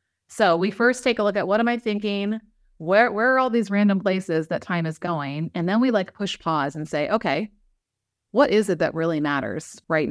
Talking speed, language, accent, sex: 225 wpm, English, American, female